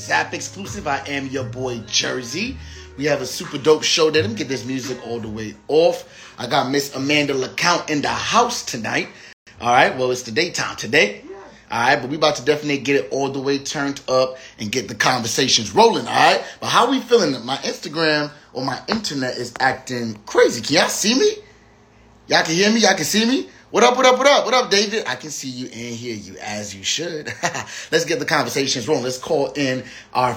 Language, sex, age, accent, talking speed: English, male, 30-49, American, 225 wpm